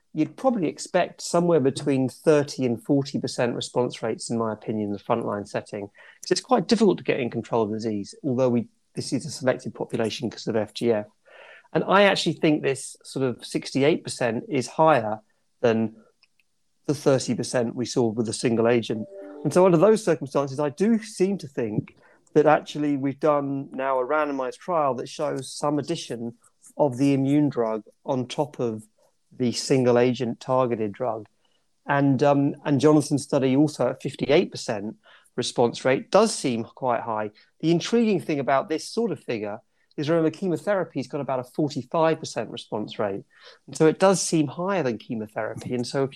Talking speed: 175 wpm